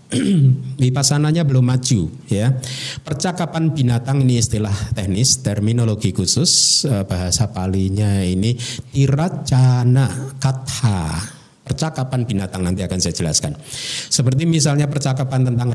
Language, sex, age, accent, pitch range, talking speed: Indonesian, male, 50-69, native, 105-140 Hz, 100 wpm